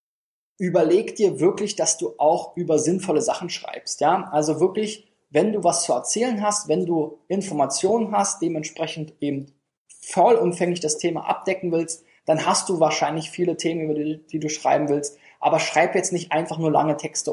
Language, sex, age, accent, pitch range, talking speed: German, male, 20-39, German, 150-185 Hz, 170 wpm